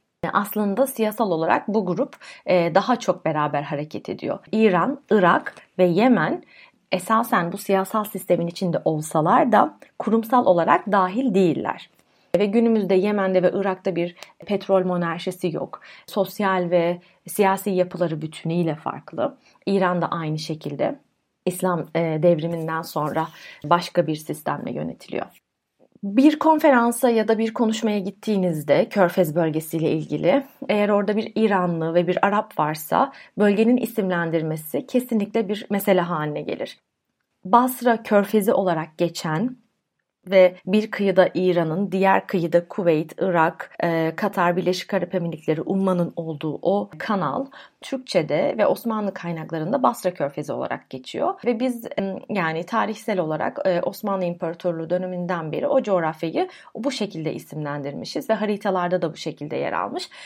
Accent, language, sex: native, Turkish, female